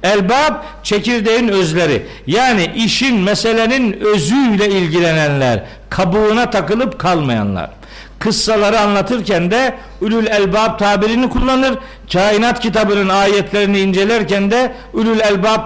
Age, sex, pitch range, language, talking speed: 50-69, male, 195-245 Hz, Turkish, 95 wpm